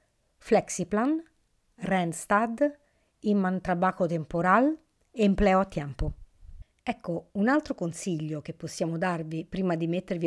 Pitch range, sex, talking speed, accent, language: 170-220 Hz, female, 105 wpm, native, Italian